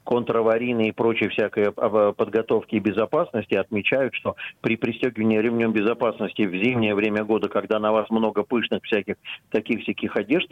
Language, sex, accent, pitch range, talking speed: Russian, male, native, 105-130 Hz, 150 wpm